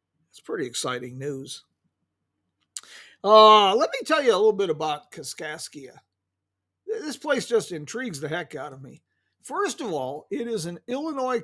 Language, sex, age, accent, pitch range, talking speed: English, male, 50-69, American, 155-230 Hz, 155 wpm